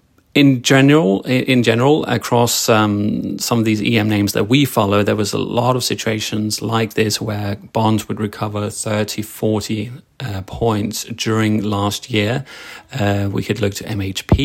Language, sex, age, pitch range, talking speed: English, male, 30-49, 100-115 Hz, 160 wpm